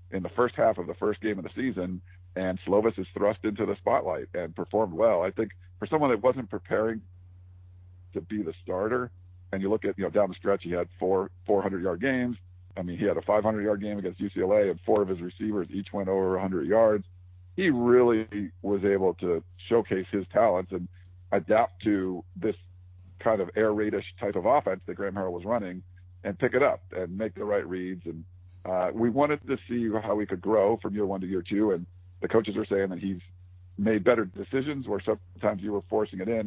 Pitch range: 90-110 Hz